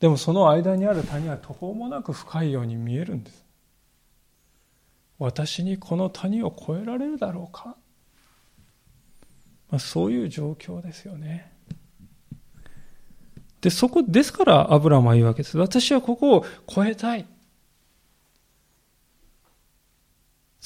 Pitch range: 135-195 Hz